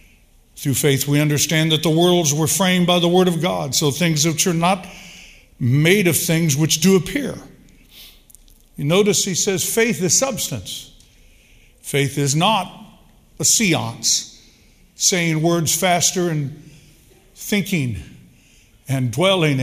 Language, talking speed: English, 135 wpm